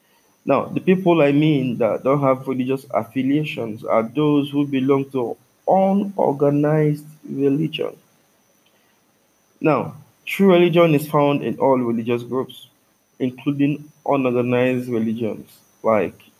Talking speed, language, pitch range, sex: 110 wpm, English, 120-145 Hz, male